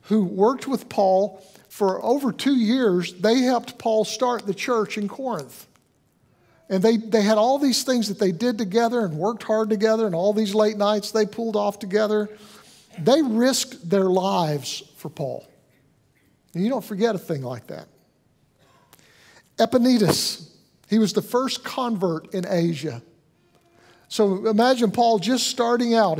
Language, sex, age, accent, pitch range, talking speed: English, male, 50-69, American, 175-225 Hz, 155 wpm